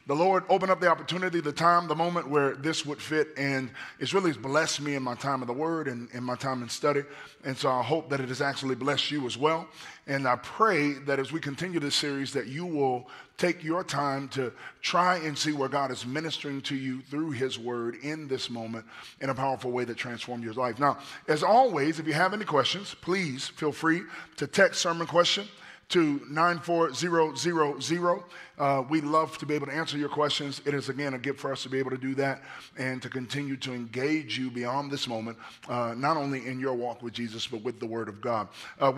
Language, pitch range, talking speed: English, 130-155 Hz, 225 wpm